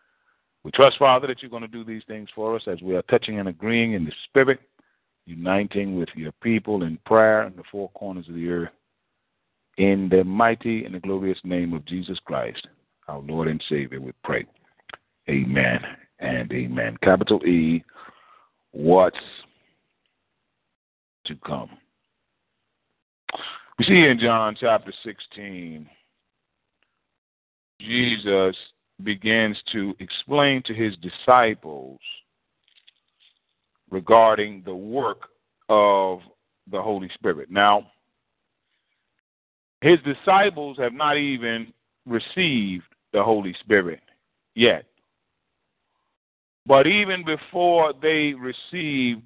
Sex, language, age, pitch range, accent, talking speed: male, English, 50-69, 90-125 Hz, American, 115 wpm